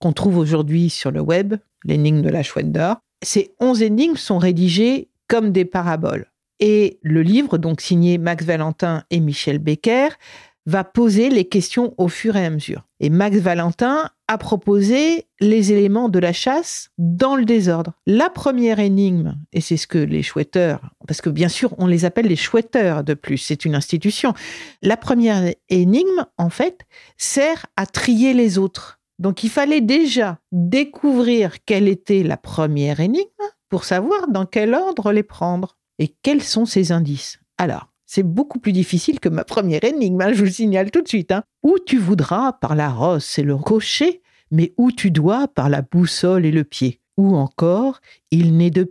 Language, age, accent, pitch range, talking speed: French, 50-69, French, 170-235 Hz, 180 wpm